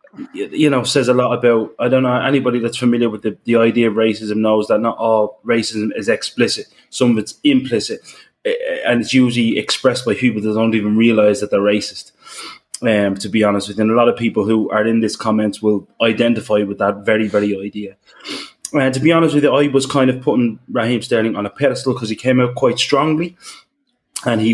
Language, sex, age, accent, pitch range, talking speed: English, male, 20-39, British, 110-130 Hz, 220 wpm